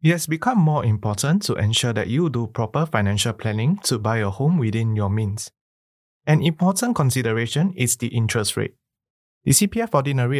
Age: 20-39